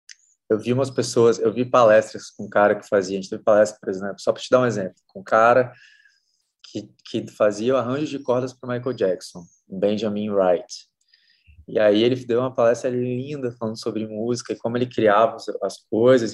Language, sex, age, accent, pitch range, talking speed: Portuguese, male, 20-39, Brazilian, 105-130 Hz, 205 wpm